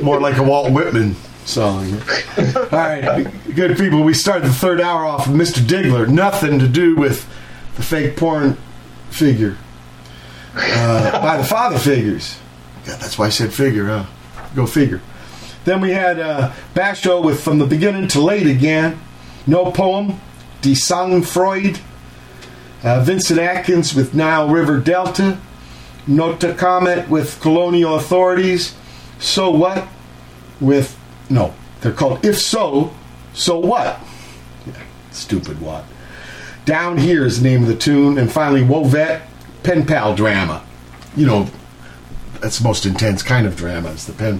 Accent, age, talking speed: American, 50-69, 145 wpm